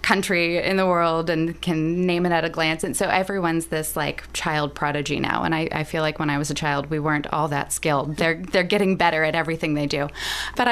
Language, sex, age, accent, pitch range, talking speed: English, female, 20-39, American, 160-185 Hz, 240 wpm